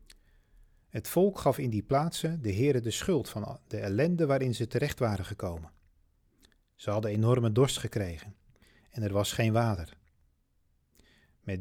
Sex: male